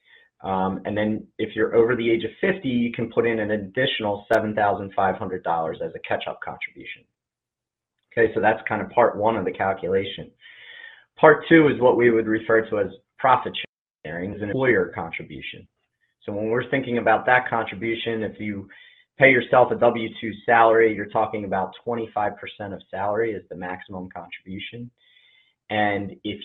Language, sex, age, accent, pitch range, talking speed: English, male, 30-49, American, 100-130 Hz, 160 wpm